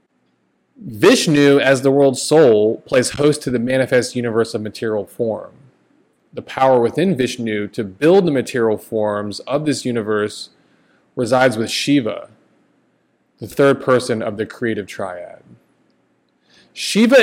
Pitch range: 110-150 Hz